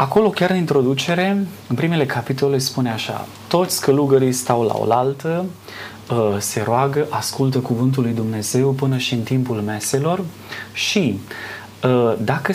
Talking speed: 130 wpm